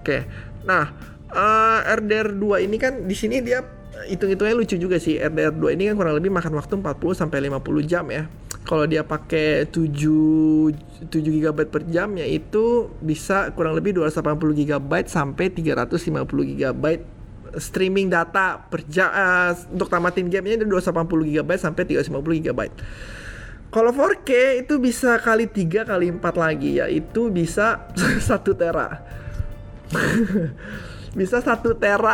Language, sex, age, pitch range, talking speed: Indonesian, male, 20-39, 155-210 Hz, 115 wpm